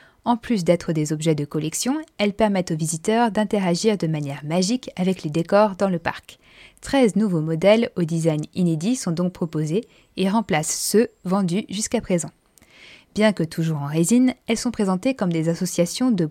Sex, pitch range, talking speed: female, 165-215 Hz, 175 wpm